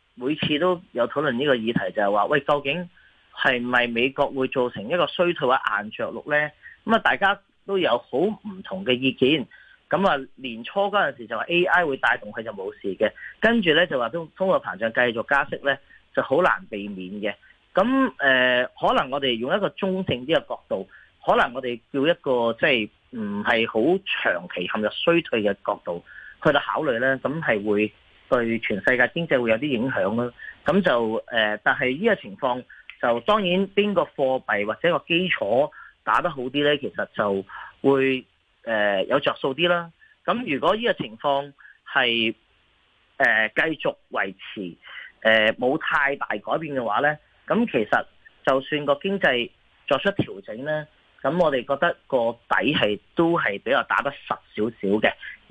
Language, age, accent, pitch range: Chinese, 30-49, native, 115-175 Hz